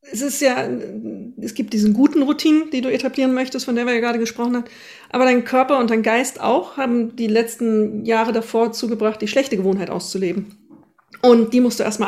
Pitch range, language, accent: 215-265 Hz, German, German